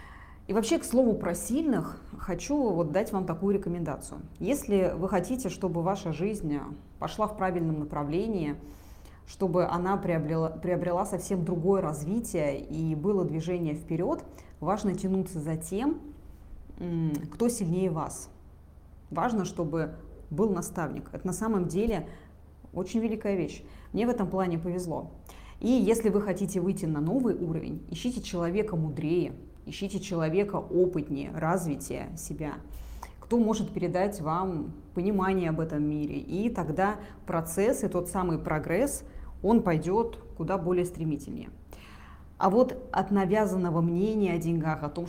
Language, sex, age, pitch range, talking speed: Russian, female, 20-39, 160-200 Hz, 130 wpm